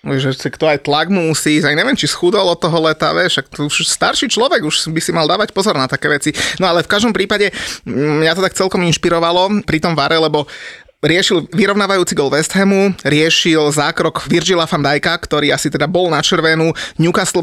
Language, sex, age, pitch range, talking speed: Slovak, male, 20-39, 150-175 Hz, 185 wpm